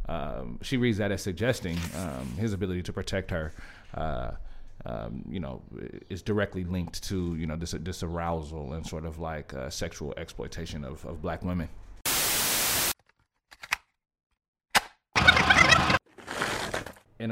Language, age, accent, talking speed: English, 30-49, American, 125 wpm